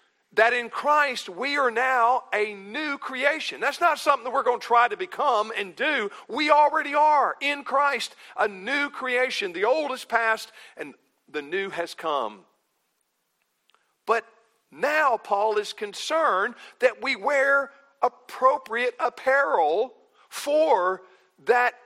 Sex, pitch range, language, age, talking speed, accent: male, 215-290 Hz, English, 50-69, 135 wpm, American